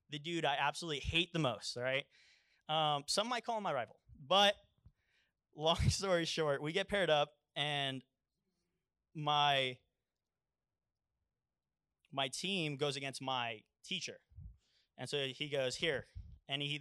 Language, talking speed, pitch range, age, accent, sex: English, 135 wpm, 135-180 Hz, 20-39, American, male